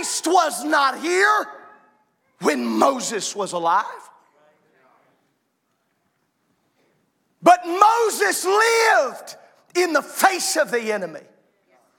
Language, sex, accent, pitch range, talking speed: English, male, American, 275-425 Hz, 85 wpm